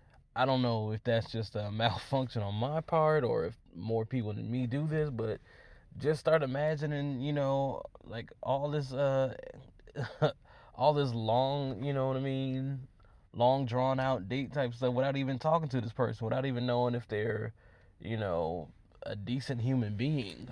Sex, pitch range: male, 110-140 Hz